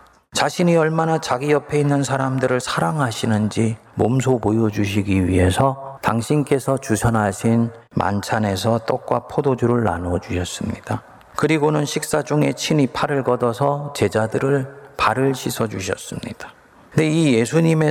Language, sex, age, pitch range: Korean, male, 40-59, 115-145 Hz